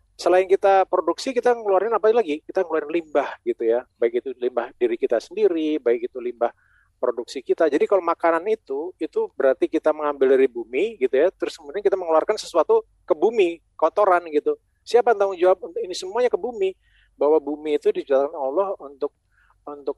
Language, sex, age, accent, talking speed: Indonesian, male, 40-59, native, 175 wpm